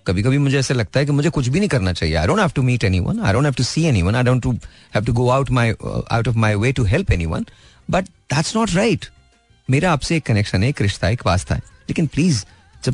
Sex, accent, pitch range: male, native, 100-145 Hz